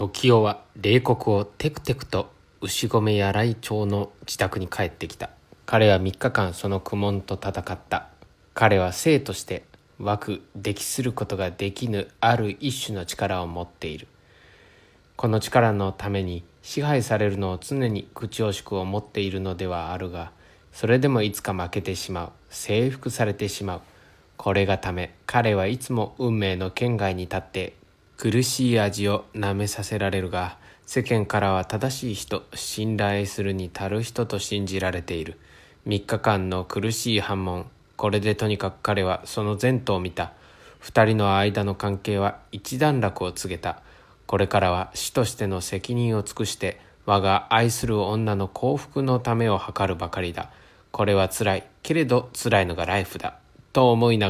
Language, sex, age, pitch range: Chinese, male, 20-39, 95-115 Hz